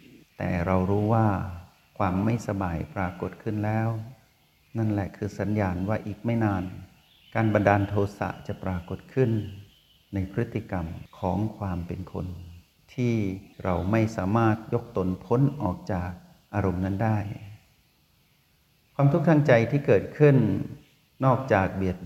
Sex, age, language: male, 60-79, Thai